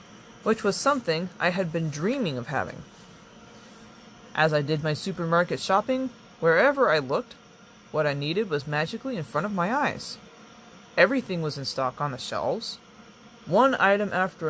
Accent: American